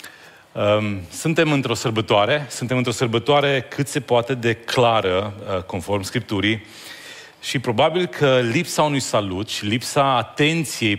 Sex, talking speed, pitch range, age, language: male, 120 wpm, 110-140 Hz, 30-49, Romanian